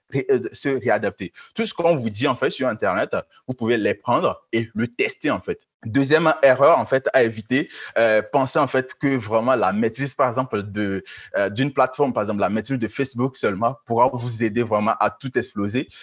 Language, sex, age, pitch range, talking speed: French, male, 30-49, 115-140 Hz, 200 wpm